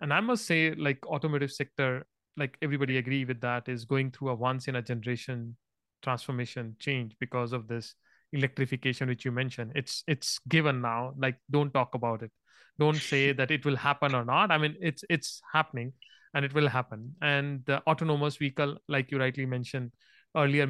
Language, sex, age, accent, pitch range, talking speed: English, male, 30-49, Indian, 125-145 Hz, 175 wpm